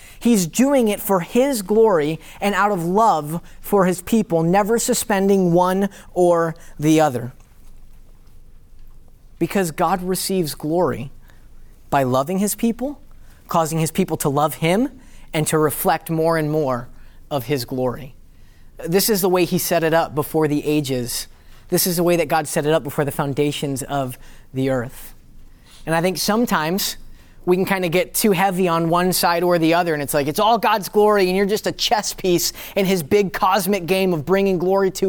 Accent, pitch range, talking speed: American, 150-210 Hz, 185 wpm